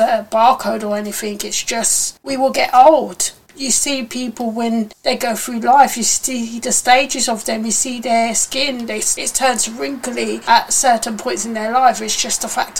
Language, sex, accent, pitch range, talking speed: English, female, British, 220-260 Hz, 195 wpm